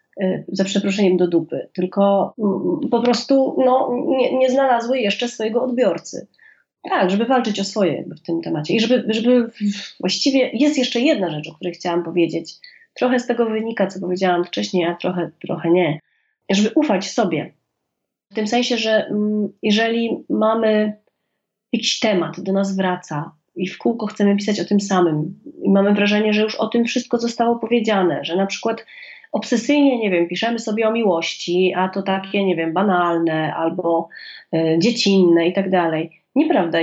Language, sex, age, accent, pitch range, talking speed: Polish, female, 30-49, native, 180-230 Hz, 165 wpm